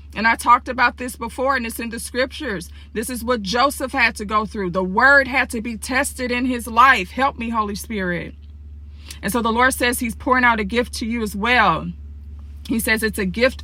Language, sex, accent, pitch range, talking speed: English, female, American, 205-255 Hz, 225 wpm